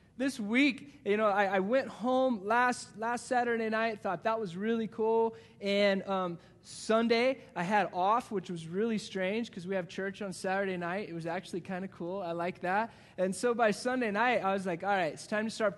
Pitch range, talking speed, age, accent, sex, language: 175-225 Hz, 215 wpm, 20-39, American, male, English